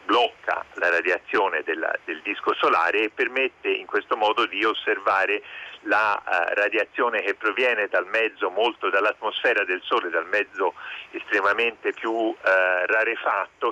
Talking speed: 130 wpm